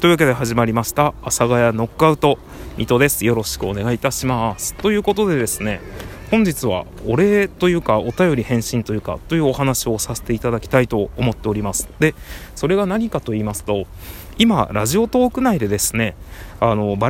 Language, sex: Japanese, male